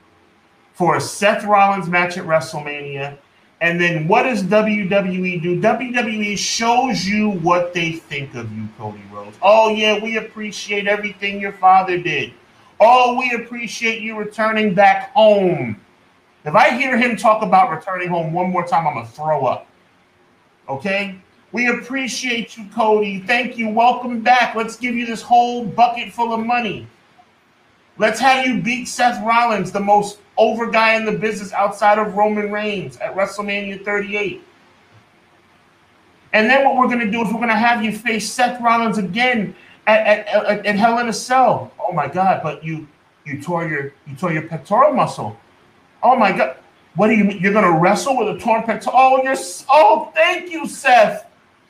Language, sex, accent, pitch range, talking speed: English, male, American, 190-245 Hz, 175 wpm